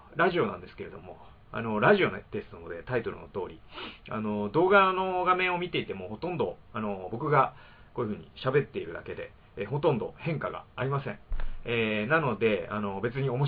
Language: Japanese